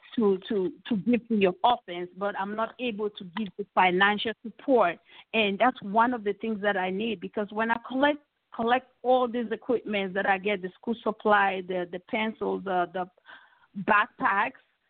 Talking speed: 180 wpm